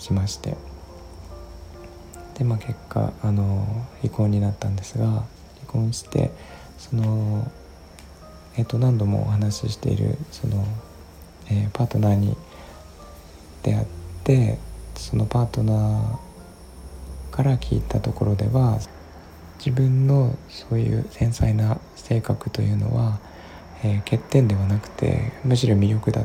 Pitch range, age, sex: 90-120 Hz, 20-39, male